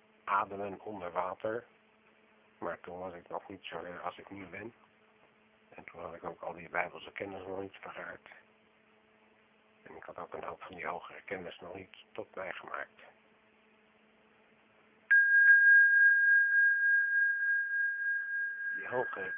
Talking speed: 135 wpm